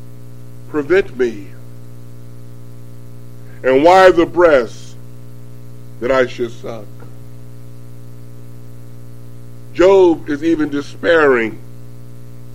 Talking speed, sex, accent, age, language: 65 wpm, female, American, 50-69, English